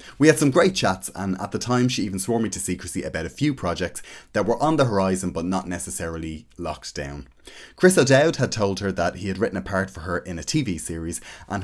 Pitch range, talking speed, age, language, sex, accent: 85-120 Hz, 240 wpm, 30-49, English, male, Irish